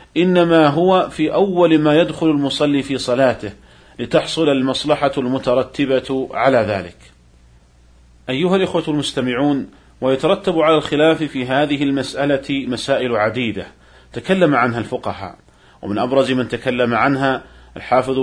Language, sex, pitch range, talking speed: Arabic, male, 115-155 Hz, 110 wpm